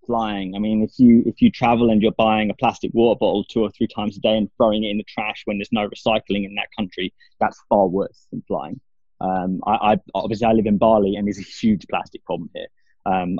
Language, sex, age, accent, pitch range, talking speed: English, male, 20-39, British, 100-135 Hz, 245 wpm